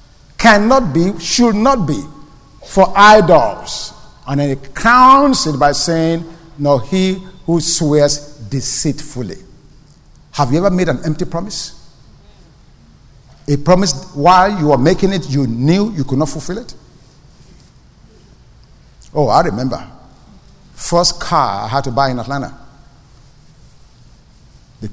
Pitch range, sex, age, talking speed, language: 140-175 Hz, male, 50-69, 125 wpm, English